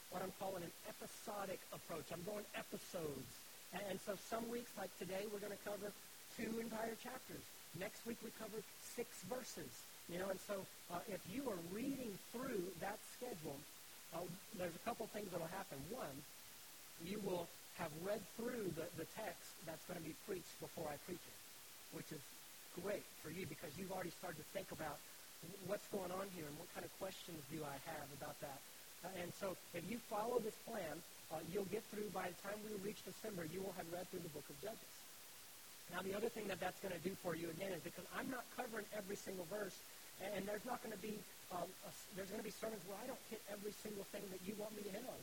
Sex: male